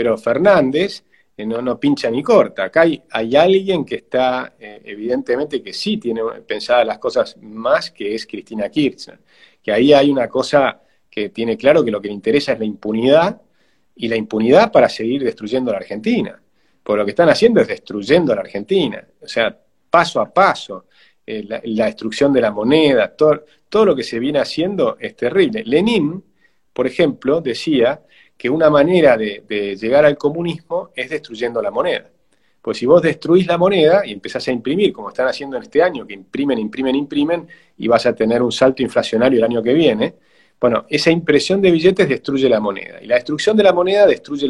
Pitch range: 115-170 Hz